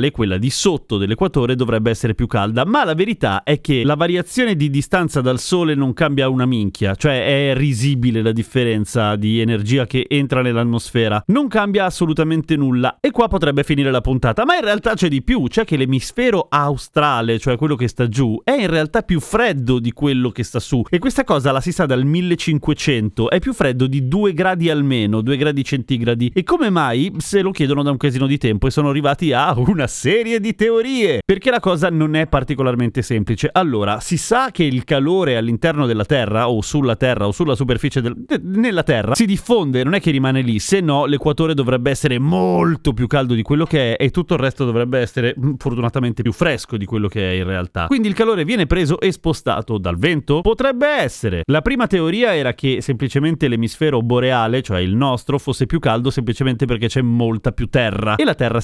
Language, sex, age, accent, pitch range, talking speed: Italian, male, 30-49, native, 120-165 Hz, 205 wpm